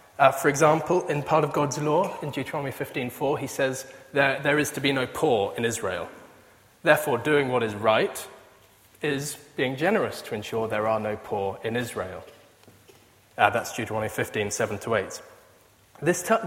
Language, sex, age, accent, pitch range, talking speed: English, male, 20-39, British, 130-175 Hz, 155 wpm